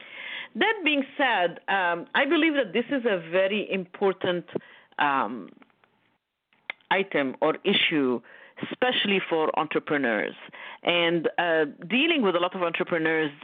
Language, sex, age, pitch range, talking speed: English, female, 50-69, 180-250 Hz, 120 wpm